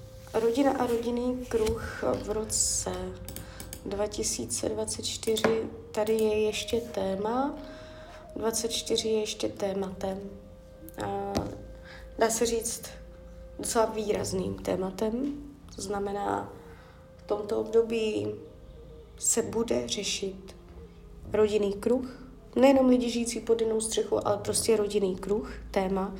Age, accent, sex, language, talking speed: 20-39, native, female, Czech, 95 wpm